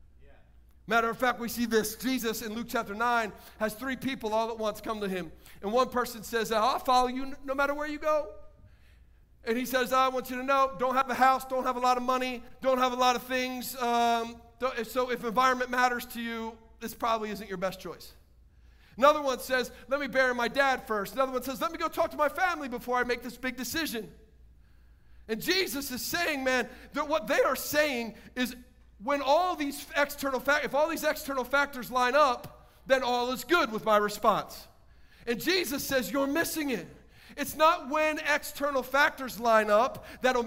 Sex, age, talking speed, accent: male, 40-59, 205 wpm, American